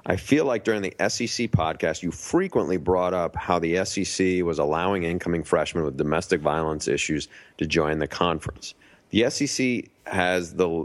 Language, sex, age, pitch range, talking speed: English, male, 40-59, 80-100 Hz, 165 wpm